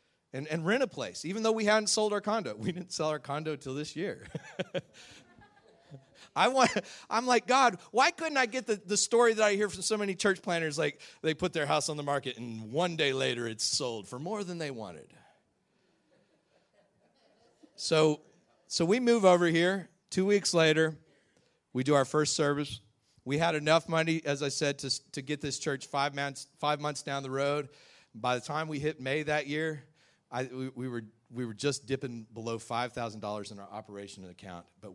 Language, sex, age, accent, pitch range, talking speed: English, male, 40-59, American, 115-165 Hz, 195 wpm